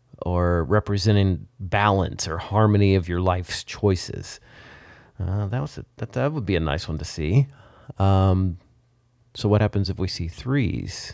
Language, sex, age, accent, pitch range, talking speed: English, male, 40-59, American, 95-120 Hz, 160 wpm